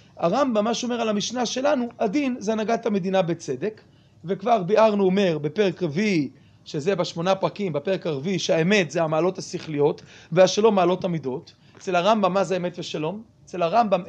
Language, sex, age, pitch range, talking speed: Hebrew, male, 30-49, 165-220 Hz, 145 wpm